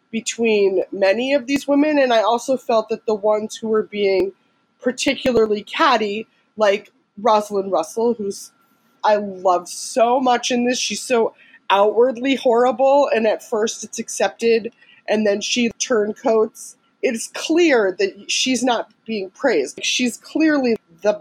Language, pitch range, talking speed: English, 210-270 Hz, 145 wpm